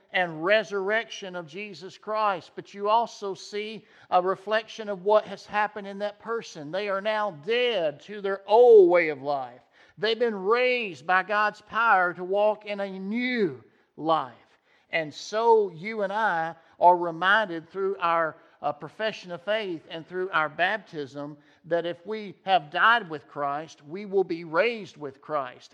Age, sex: 50-69, male